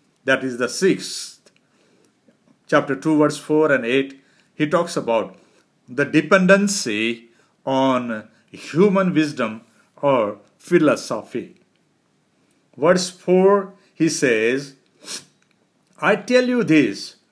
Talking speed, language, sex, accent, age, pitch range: 95 wpm, English, male, Indian, 50-69, 130-195 Hz